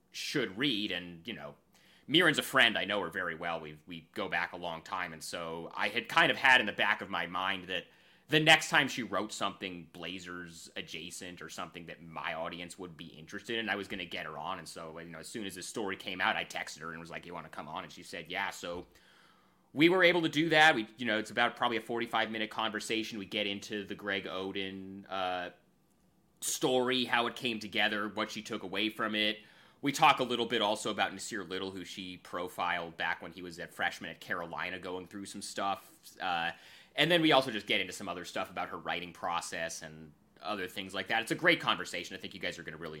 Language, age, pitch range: English, 30-49, 90-120 Hz